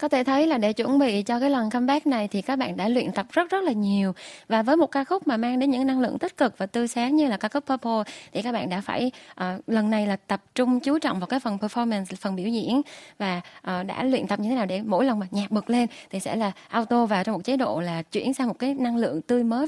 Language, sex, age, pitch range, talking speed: Vietnamese, female, 20-39, 215-275 Hz, 295 wpm